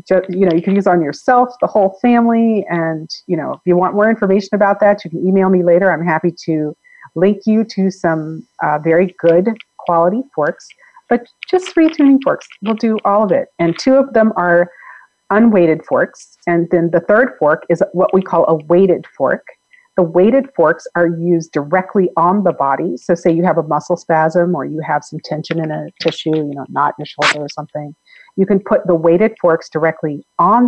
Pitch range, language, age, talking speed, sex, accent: 160-205 Hz, English, 40-59, 210 wpm, female, American